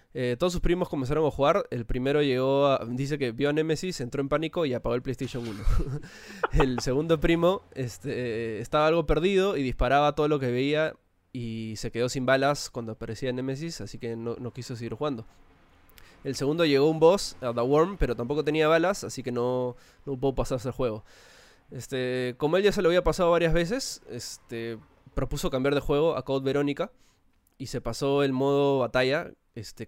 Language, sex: Spanish, male